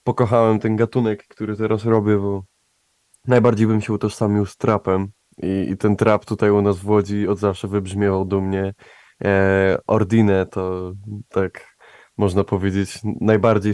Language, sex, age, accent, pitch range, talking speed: Polish, male, 20-39, native, 100-110 Hz, 150 wpm